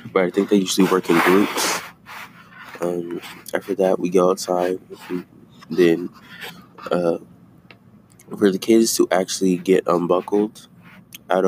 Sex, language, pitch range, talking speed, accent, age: male, English, 90-95 Hz, 125 wpm, American, 20-39